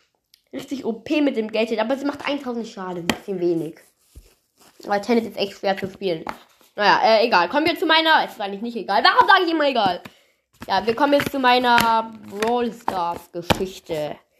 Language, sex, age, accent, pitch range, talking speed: German, female, 20-39, German, 185-255 Hz, 190 wpm